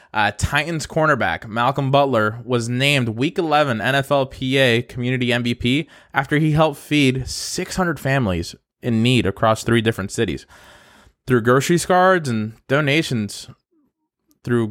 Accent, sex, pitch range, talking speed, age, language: American, male, 115-150 Hz, 125 wpm, 20-39, English